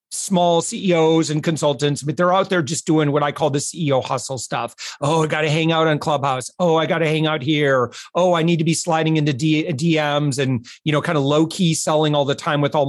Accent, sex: American, male